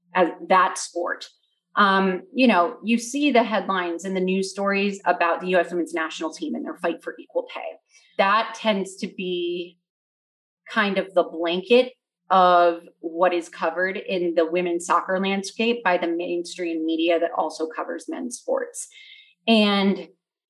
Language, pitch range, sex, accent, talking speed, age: English, 175-245 Hz, female, American, 155 wpm, 30-49